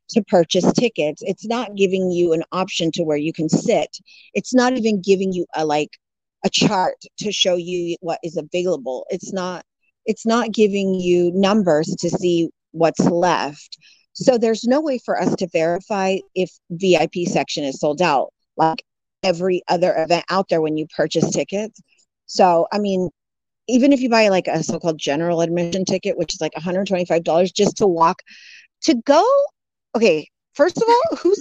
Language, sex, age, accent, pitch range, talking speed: English, female, 40-59, American, 170-230 Hz, 175 wpm